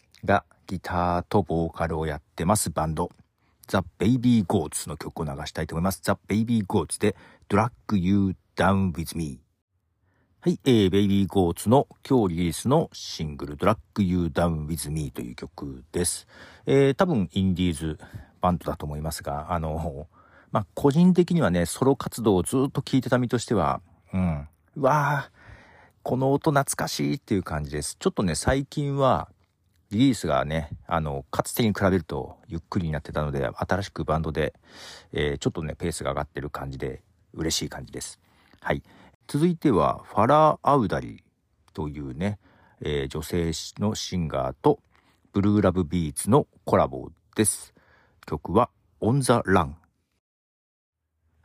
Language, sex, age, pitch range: Japanese, male, 50-69, 80-105 Hz